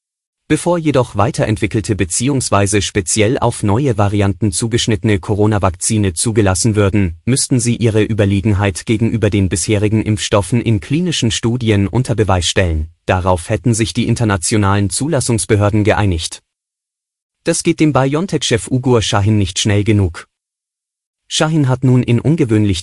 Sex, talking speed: male, 125 wpm